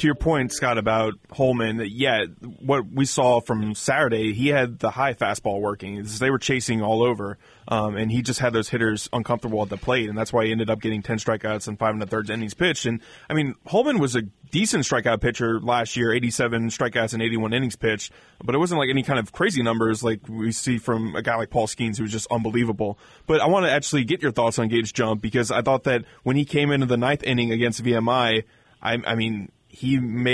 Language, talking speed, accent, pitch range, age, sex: English, 235 wpm, American, 115-130 Hz, 20-39, male